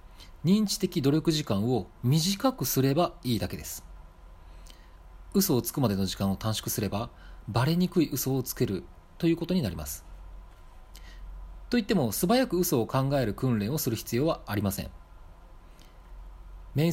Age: 40-59